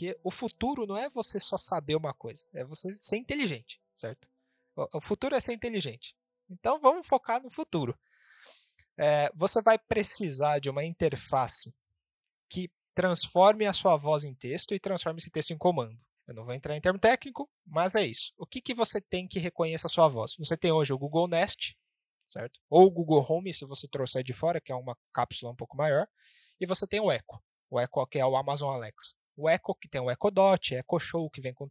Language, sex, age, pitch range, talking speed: Portuguese, male, 20-39, 145-195 Hz, 210 wpm